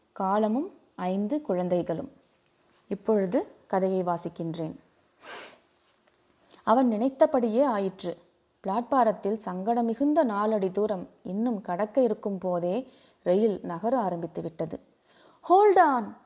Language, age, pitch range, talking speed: Tamil, 20-39, 180-245 Hz, 85 wpm